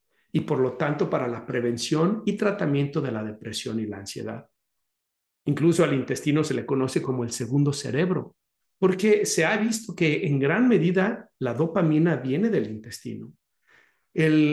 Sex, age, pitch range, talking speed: male, 50-69, 130-165 Hz, 160 wpm